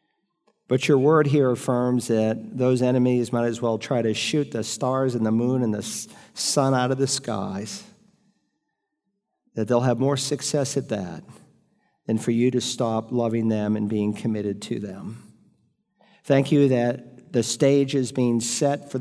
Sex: male